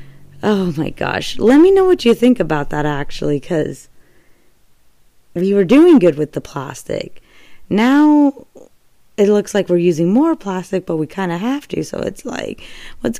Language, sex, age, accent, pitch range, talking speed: English, female, 20-39, American, 155-210 Hz, 175 wpm